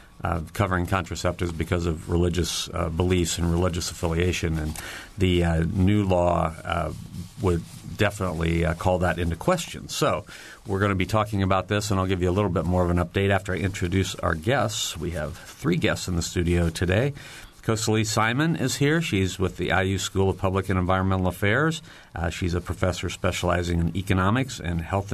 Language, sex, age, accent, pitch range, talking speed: English, male, 50-69, American, 90-110 Hz, 190 wpm